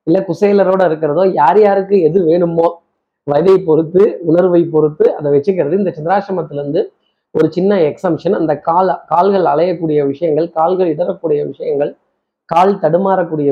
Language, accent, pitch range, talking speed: Tamil, native, 150-190 Hz, 125 wpm